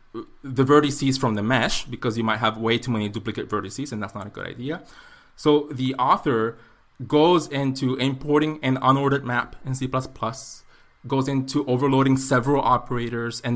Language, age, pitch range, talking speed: English, 20-39, 120-155 Hz, 165 wpm